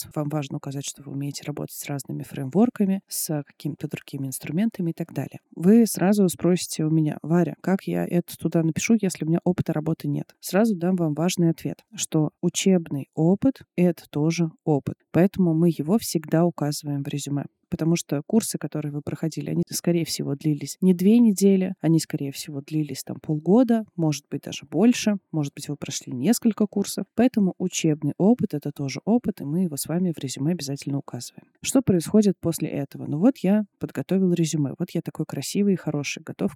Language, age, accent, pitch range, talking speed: Russian, 20-39, native, 150-195 Hz, 185 wpm